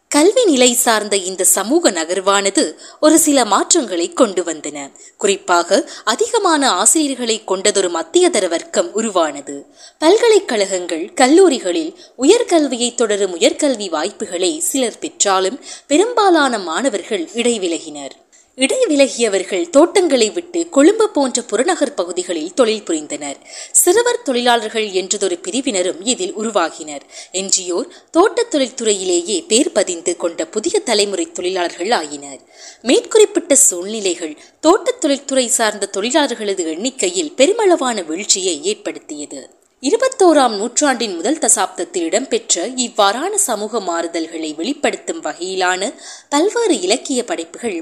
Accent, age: native, 20-39